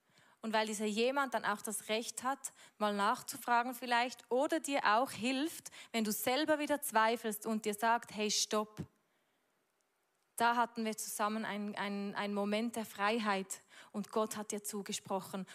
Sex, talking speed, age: female, 155 wpm, 20-39